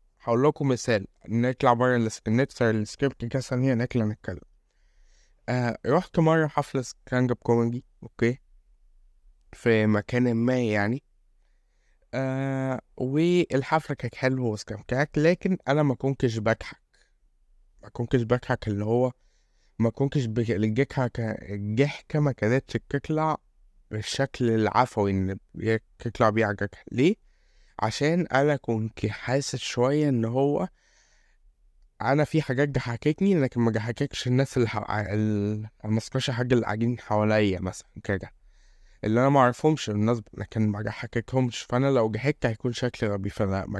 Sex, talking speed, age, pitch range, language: male, 125 wpm, 20-39, 110-135 Hz, Arabic